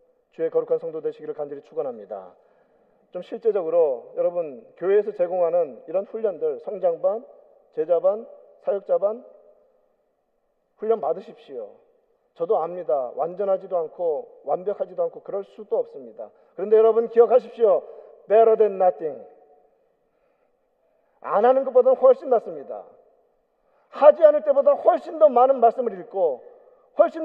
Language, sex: Korean, male